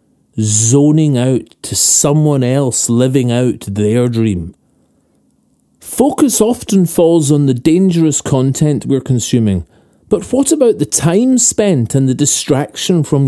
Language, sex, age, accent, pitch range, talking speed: English, male, 40-59, British, 125-175 Hz, 125 wpm